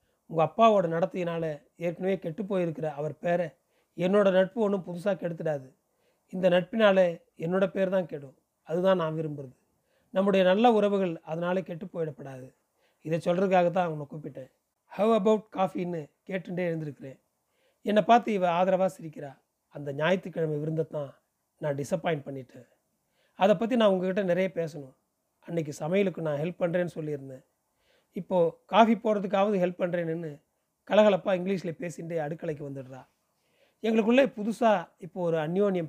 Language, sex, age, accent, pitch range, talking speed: Tamil, male, 30-49, native, 155-195 Hz, 125 wpm